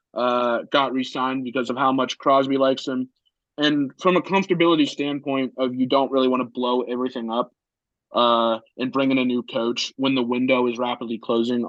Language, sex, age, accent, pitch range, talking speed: English, male, 20-39, American, 125-140 Hz, 195 wpm